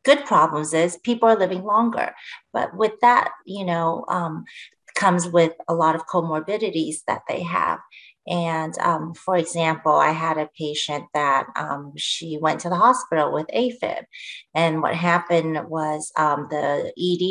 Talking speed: 160 wpm